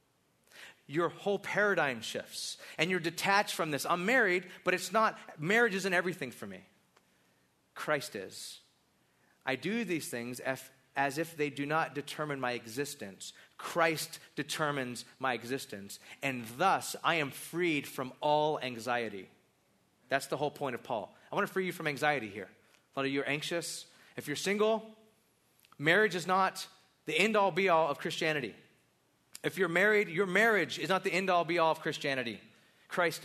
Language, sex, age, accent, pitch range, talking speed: English, male, 30-49, American, 140-190 Hz, 160 wpm